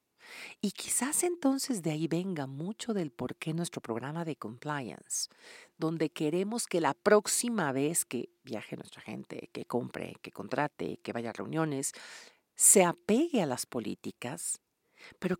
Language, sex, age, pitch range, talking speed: Spanish, female, 50-69, 145-200 Hz, 150 wpm